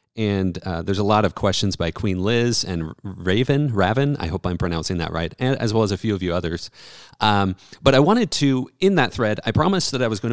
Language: English